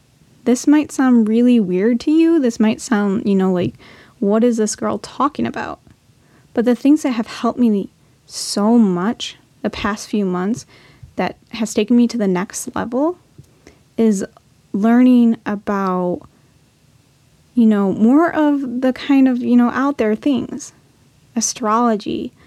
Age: 10-29